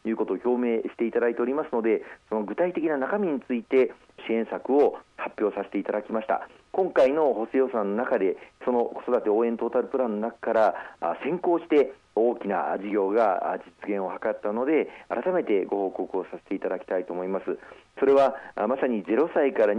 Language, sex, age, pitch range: Japanese, male, 40-59, 115-145 Hz